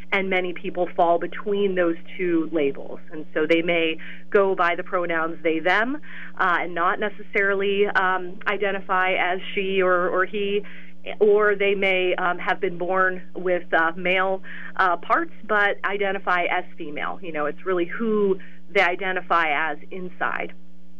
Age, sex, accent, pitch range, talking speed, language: 30-49, female, American, 160-190 Hz, 155 wpm, English